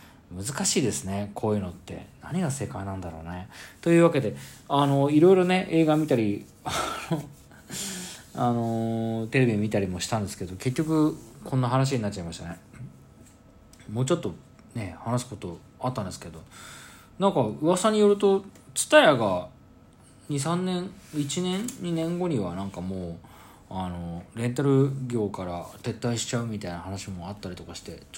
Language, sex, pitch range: Japanese, male, 95-130 Hz